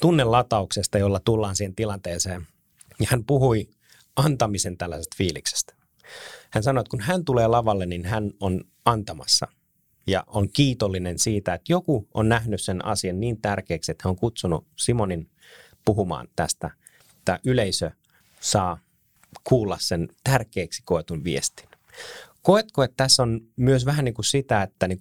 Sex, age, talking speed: male, 30-49, 145 wpm